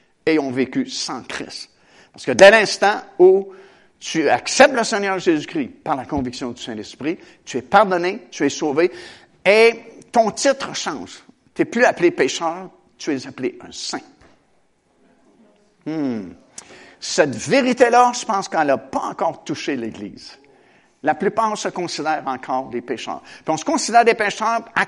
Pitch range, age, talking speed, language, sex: 165-245 Hz, 60-79, 155 wpm, French, male